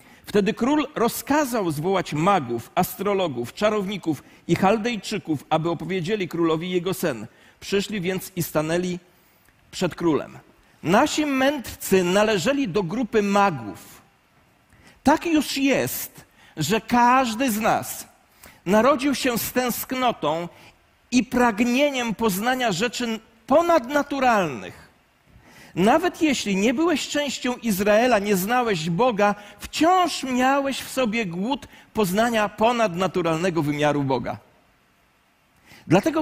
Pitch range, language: 185-260 Hz, Polish